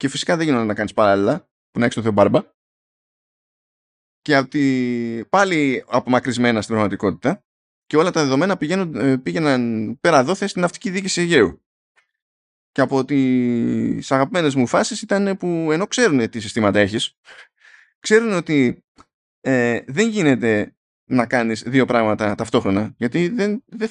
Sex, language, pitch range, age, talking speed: male, Greek, 115-165 Hz, 20-39, 145 wpm